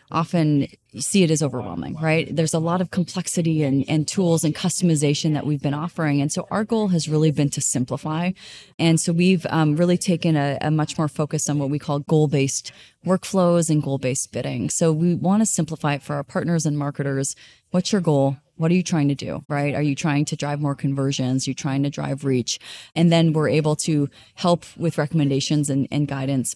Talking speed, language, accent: 210 wpm, English, American